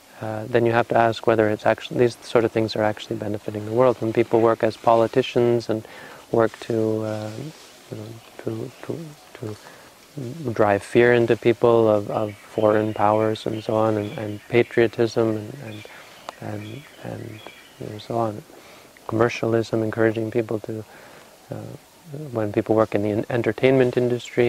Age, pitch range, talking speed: 30-49, 110-125 Hz, 160 wpm